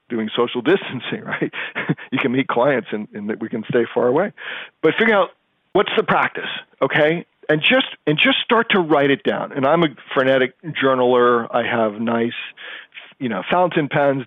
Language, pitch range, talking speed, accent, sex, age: English, 130-170 Hz, 180 wpm, American, male, 40-59